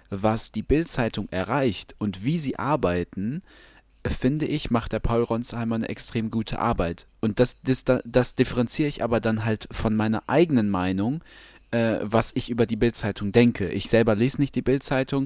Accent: German